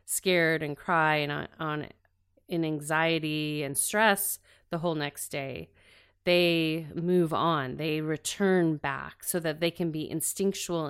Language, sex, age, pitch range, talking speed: English, female, 30-49, 150-180 Hz, 145 wpm